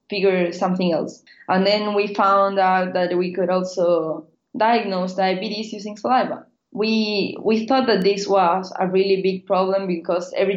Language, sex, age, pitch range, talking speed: English, female, 20-39, 180-210 Hz, 160 wpm